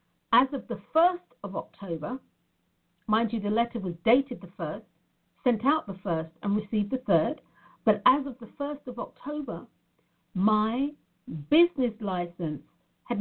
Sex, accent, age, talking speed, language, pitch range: female, British, 50-69, 150 wpm, English, 175-240 Hz